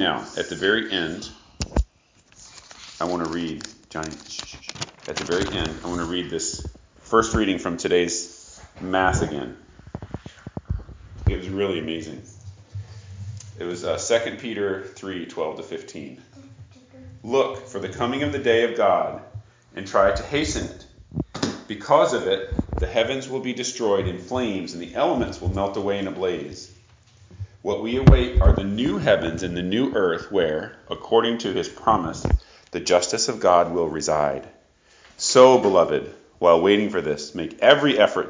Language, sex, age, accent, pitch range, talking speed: English, male, 40-59, American, 90-125 Hz, 165 wpm